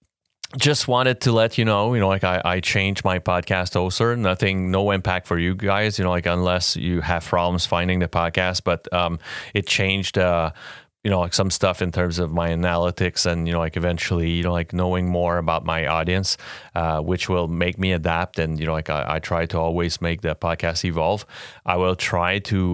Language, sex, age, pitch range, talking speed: English, male, 30-49, 85-95 Hz, 215 wpm